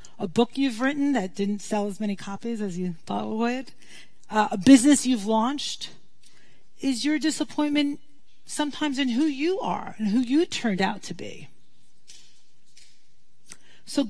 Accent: American